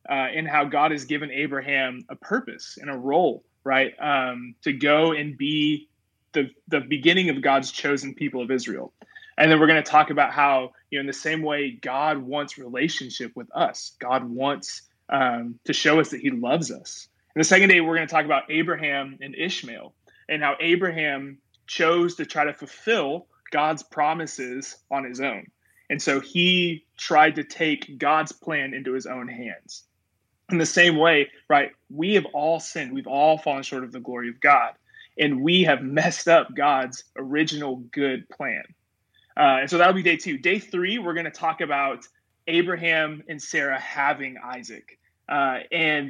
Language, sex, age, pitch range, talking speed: English, male, 20-39, 135-165 Hz, 185 wpm